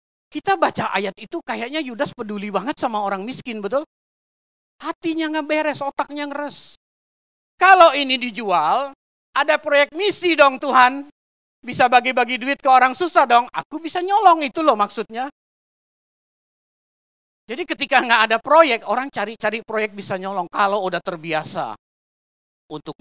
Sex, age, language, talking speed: male, 40-59, Indonesian, 135 wpm